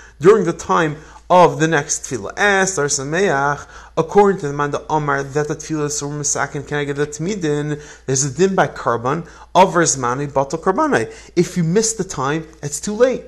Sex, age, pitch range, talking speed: male, 30-49, 145-195 Hz, 145 wpm